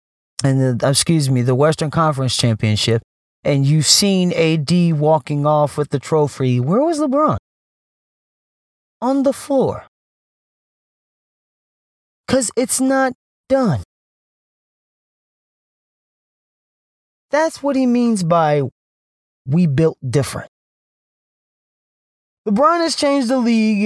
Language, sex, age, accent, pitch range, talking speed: English, male, 30-49, American, 145-225 Hz, 100 wpm